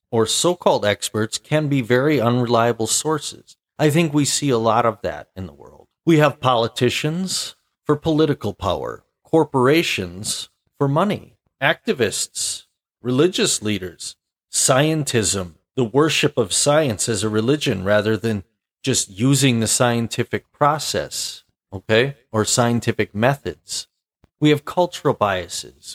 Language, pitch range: English, 105-150 Hz